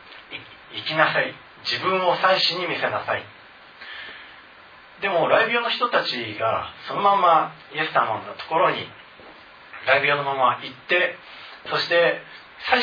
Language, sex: Japanese, male